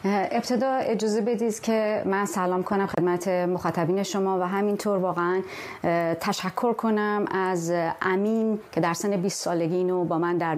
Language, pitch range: Persian, 185-215 Hz